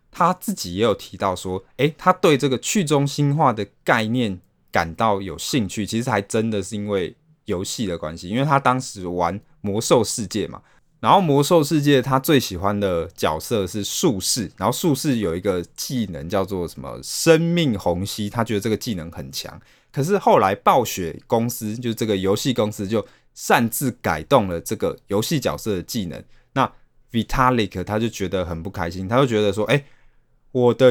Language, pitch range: Chinese, 95-130 Hz